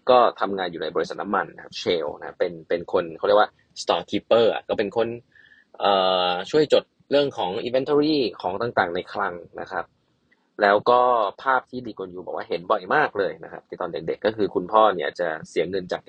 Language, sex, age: Thai, male, 20-39